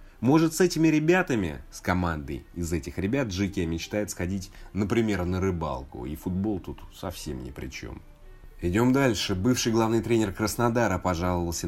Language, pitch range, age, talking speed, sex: Russian, 85-115 Hz, 30-49, 150 wpm, male